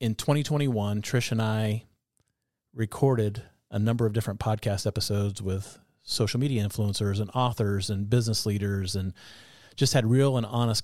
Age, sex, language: 30-49, male, English